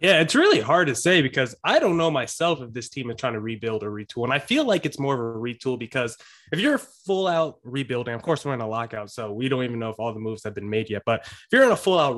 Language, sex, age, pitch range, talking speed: English, male, 20-39, 120-160 Hz, 300 wpm